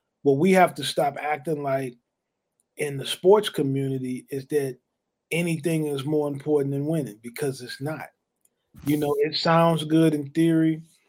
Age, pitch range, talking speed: 30-49, 145-165 Hz, 155 wpm